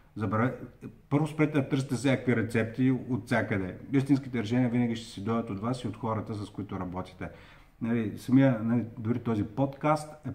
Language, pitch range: Bulgarian, 110-135 Hz